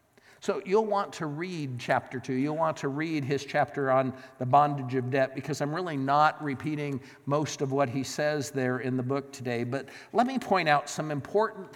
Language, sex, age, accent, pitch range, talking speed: English, male, 50-69, American, 135-185 Hz, 205 wpm